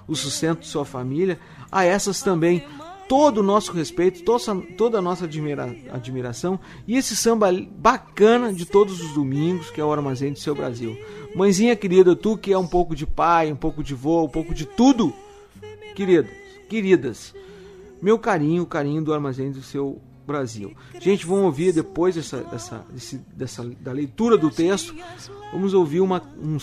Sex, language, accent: male, Portuguese, Brazilian